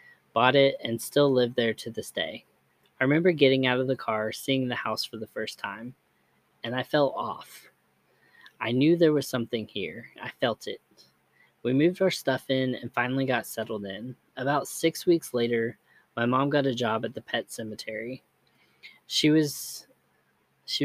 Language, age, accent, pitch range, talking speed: English, 20-39, American, 115-140 Hz, 175 wpm